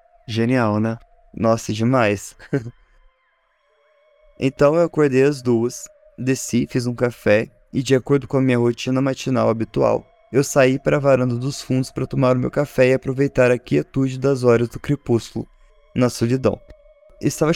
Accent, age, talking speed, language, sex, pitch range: Brazilian, 20-39, 155 wpm, Portuguese, male, 125-155 Hz